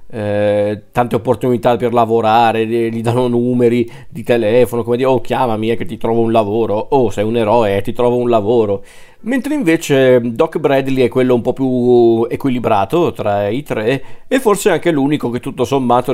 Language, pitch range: Italian, 115-140 Hz